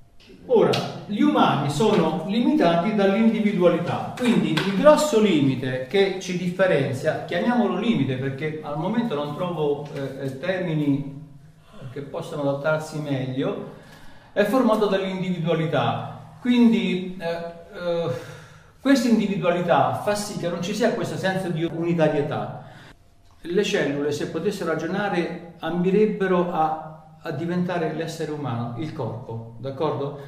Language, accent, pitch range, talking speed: Italian, native, 140-185 Hz, 115 wpm